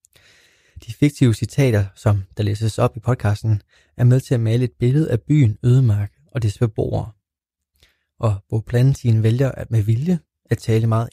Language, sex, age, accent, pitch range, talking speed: Danish, male, 20-39, native, 105-130 Hz, 180 wpm